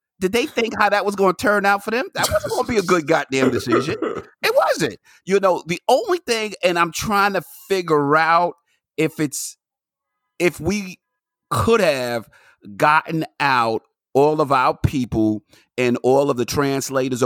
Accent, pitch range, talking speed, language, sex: American, 130-200 Hz, 175 wpm, English, male